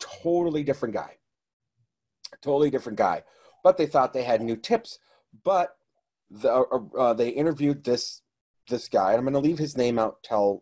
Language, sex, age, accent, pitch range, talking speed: English, male, 30-49, American, 105-140 Hz, 175 wpm